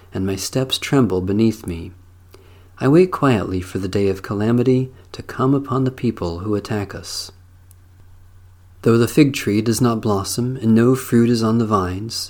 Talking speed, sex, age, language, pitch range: 175 wpm, male, 40-59, English, 90-125 Hz